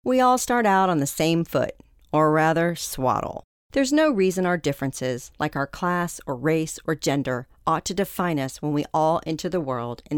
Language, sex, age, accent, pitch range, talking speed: English, female, 40-59, American, 150-195 Hz, 200 wpm